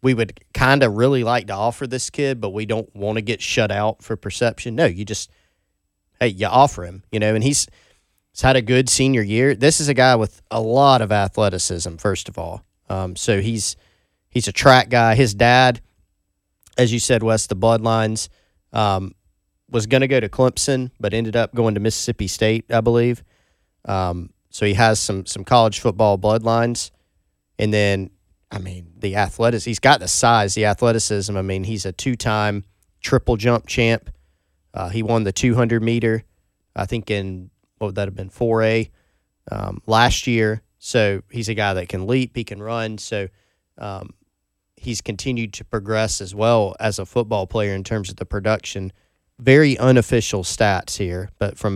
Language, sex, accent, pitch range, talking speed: English, male, American, 95-115 Hz, 185 wpm